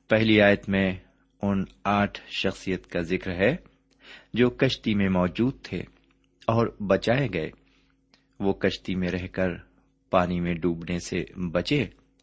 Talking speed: 135 wpm